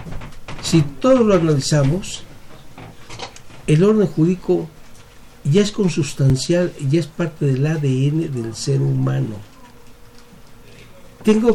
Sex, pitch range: male, 130-175 Hz